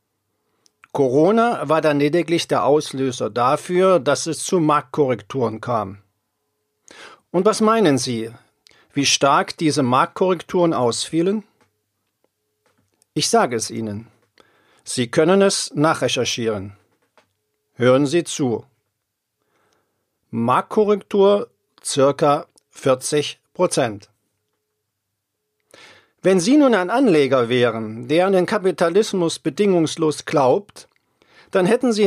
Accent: German